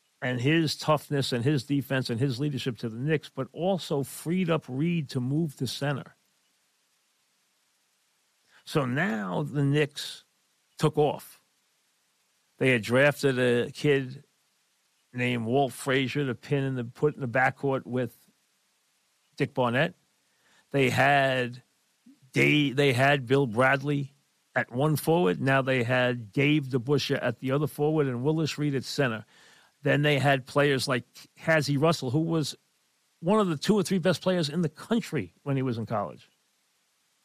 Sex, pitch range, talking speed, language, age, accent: male, 130-155 Hz, 155 wpm, English, 50-69, American